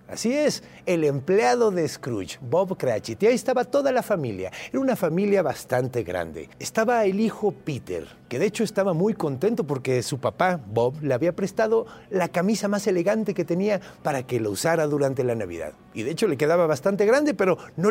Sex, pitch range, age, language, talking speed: male, 145-205 Hz, 50-69, Spanish, 195 wpm